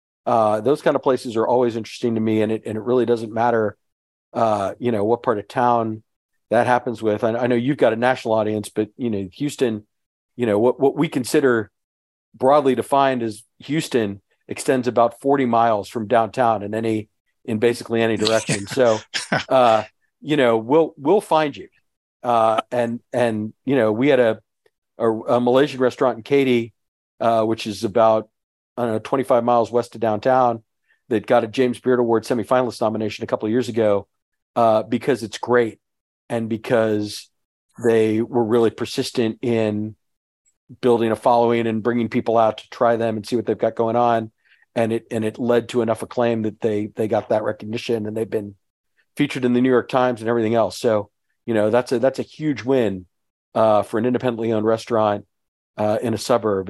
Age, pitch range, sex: 40-59, 110-125 Hz, male